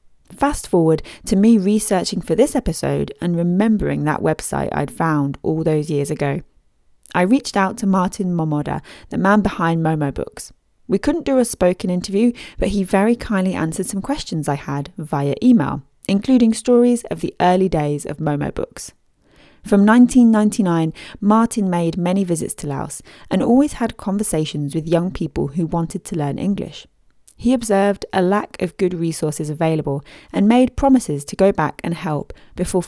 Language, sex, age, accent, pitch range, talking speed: English, female, 30-49, British, 155-205 Hz, 170 wpm